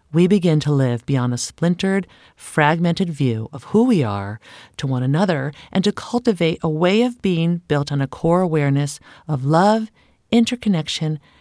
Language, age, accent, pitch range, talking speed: English, 40-59, American, 150-215 Hz, 165 wpm